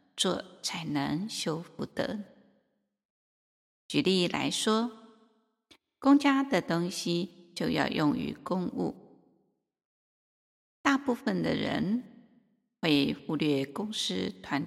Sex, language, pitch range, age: female, Chinese, 165-240 Hz, 50-69